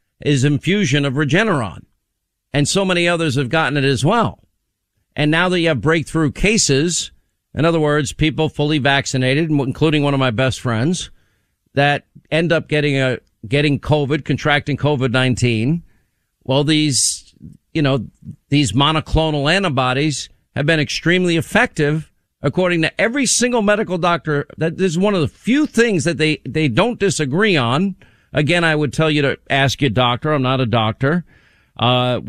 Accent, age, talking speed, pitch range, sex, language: American, 50-69, 160 wpm, 140-180 Hz, male, English